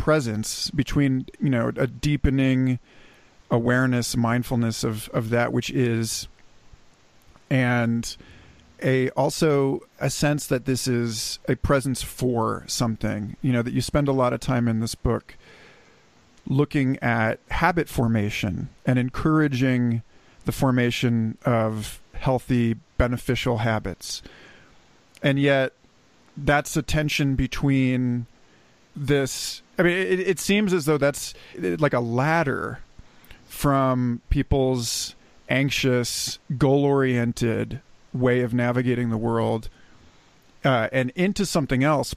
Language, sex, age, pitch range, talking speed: English, male, 40-59, 115-140 Hz, 115 wpm